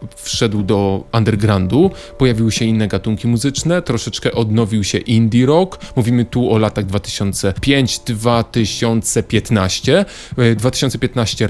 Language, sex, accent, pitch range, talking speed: Polish, male, native, 110-135 Hz, 105 wpm